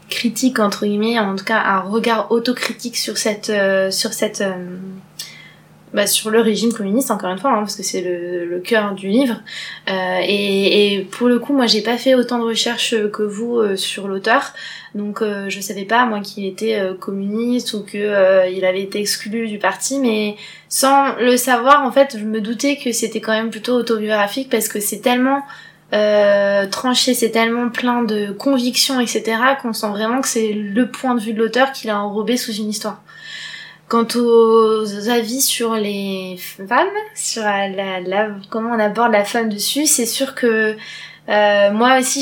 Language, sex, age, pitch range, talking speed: French, female, 20-39, 200-240 Hz, 190 wpm